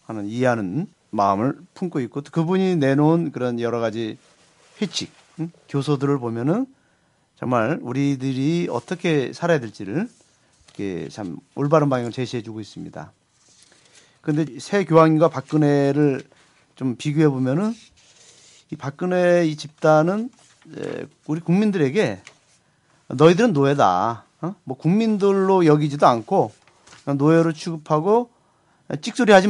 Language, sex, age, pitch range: Korean, male, 40-59, 135-175 Hz